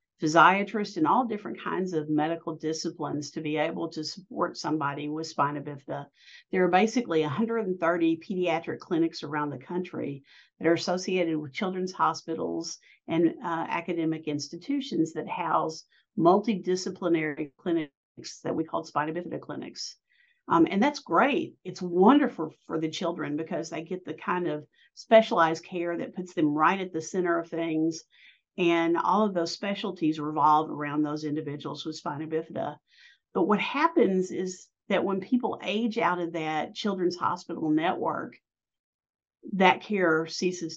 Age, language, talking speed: 50-69, English, 150 wpm